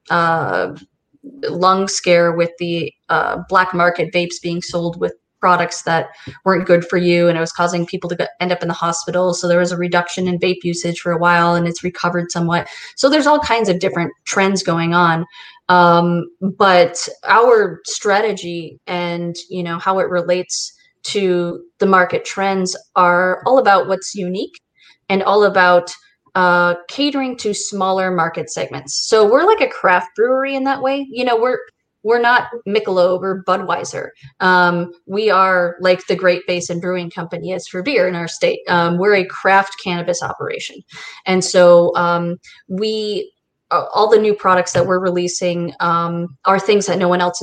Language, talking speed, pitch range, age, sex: English, 175 wpm, 175-195 Hz, 20-39, female